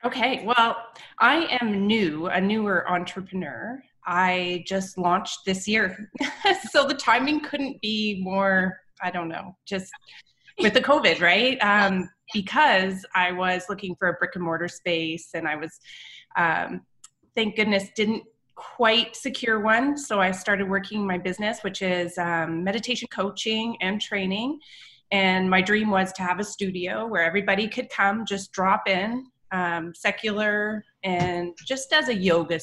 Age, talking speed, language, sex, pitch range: 30-49, 155 wpm, English, female, 180-225 Hz